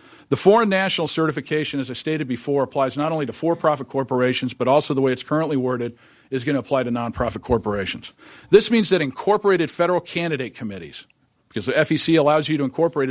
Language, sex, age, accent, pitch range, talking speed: English, male, 50-69, American, 130-170 Hz, 190 wpm